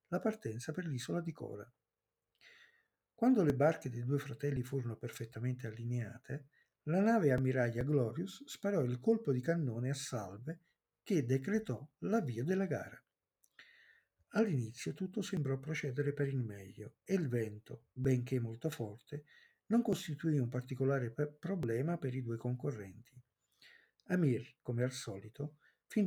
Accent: native